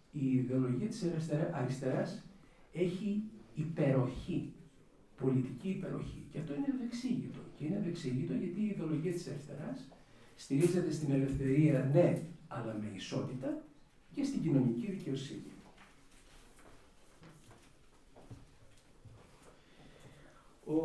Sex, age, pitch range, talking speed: male, 50-69, 135-185 Hz, 95 wpm